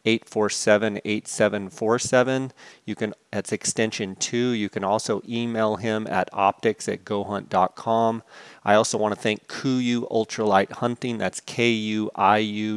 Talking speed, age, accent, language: 115 wpm, 30-49, American, English